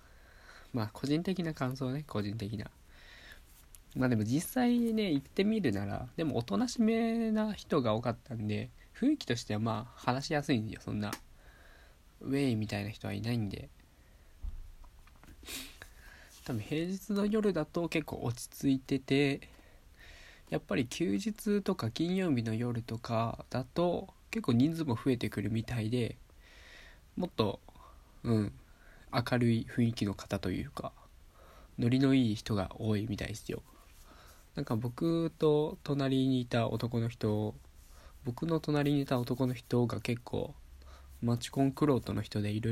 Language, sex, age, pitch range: Japanese, male, 20-39, 100-135 Hz